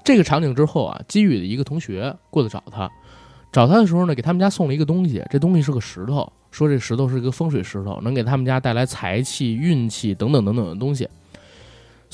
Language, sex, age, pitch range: Chinese, male, 20-39, 115-160 Hz